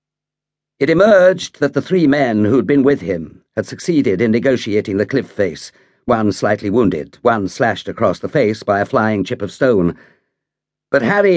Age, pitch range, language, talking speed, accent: 50-69, 105-140 Hz, English, 175 wpm, British